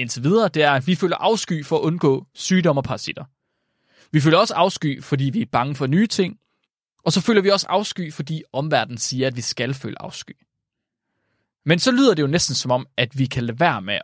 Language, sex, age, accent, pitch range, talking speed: Danish, male, 20-39, native, 130-185 Hz, 220 wpm